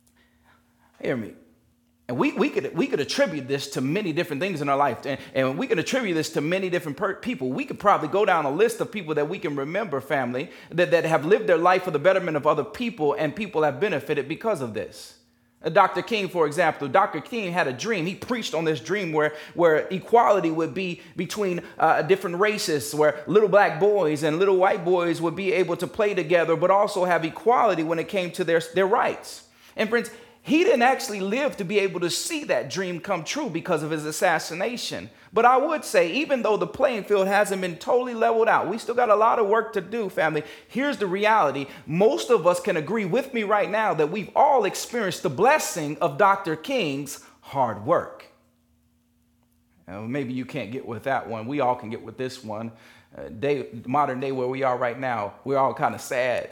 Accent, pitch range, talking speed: American, 135-205 Hz, 215 wpm